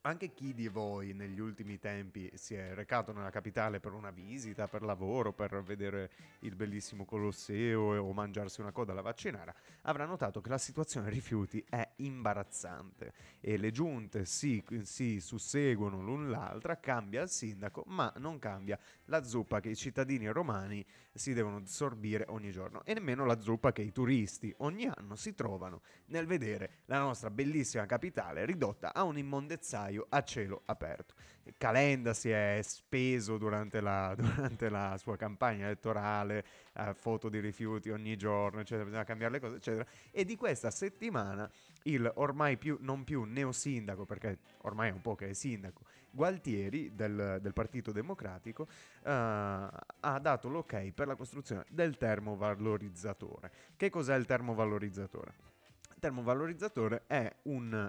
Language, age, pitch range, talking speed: Italian, 30-49, 105-135 Hz, 155 wpm